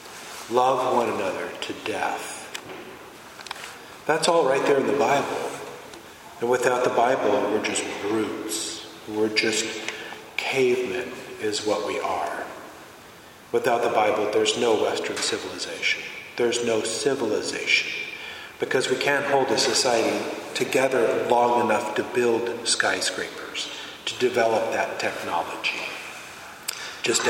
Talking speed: 115 wpm